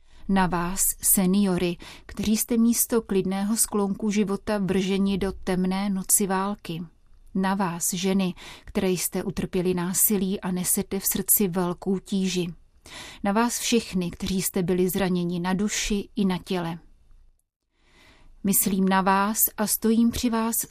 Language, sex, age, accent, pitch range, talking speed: Czech, female, 30-49, native, 185-200 Hz, 135 wpm